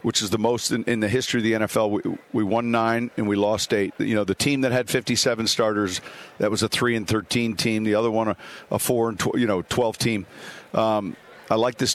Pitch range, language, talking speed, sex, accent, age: 110-125 Hz, English, 250 wpm, male, American, 50-69